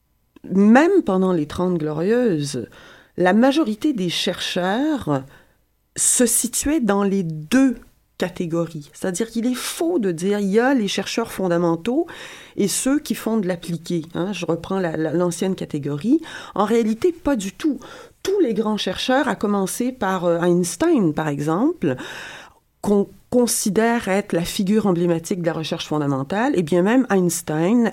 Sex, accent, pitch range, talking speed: female, French, 175-235 Hz, 150 wpm